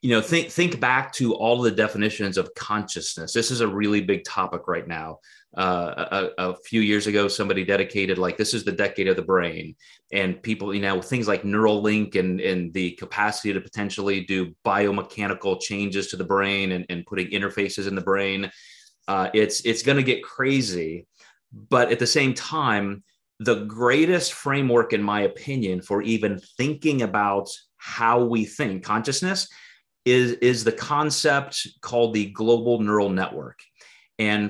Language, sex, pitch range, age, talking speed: English, male, 100-130 Hz, 30-49, 170 wpm